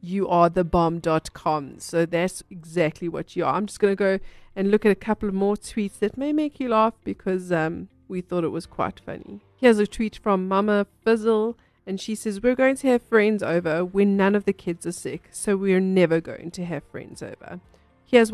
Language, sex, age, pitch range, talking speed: English, female, 40-59, 175-220 Hz, 220 wpm